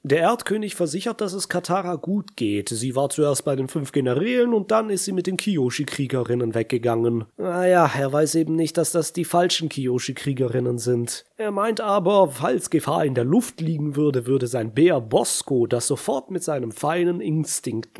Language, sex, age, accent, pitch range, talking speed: German, male, 30-49, German, 135-190 Hz, 185 wpm